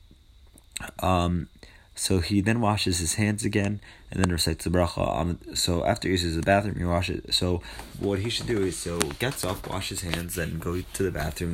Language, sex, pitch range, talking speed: English, male, 85-100 Hz, 205 wpm